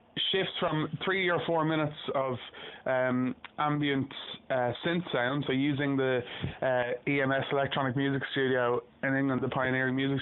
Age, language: 20-39, English